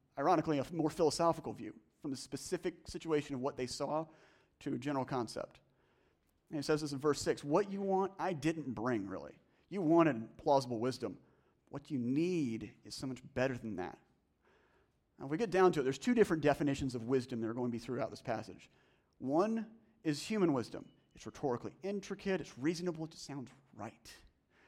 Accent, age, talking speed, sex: American, 40-59, 190 wpm, male